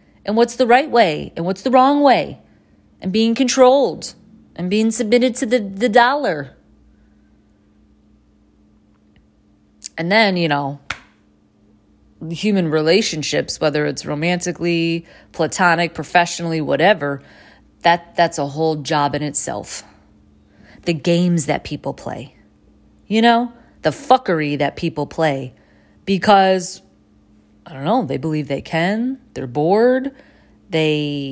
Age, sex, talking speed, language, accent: 30-49, female, 120 wpm, English, American